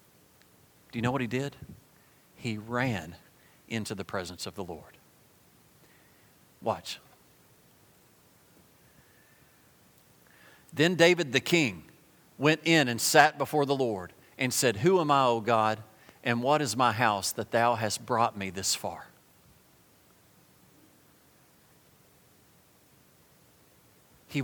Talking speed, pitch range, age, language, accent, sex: 110 wpm, 110-140 Hz, 40-59, English, American, male